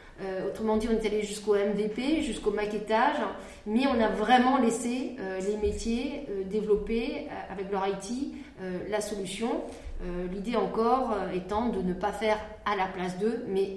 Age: 30-49